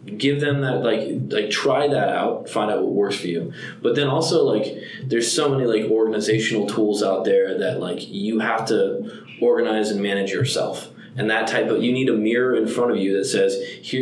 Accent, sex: American, male